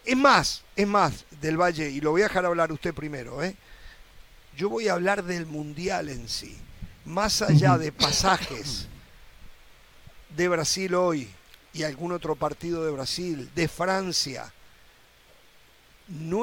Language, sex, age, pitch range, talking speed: Spanish, male, 50-69, 150-185 Hz, 140 wpm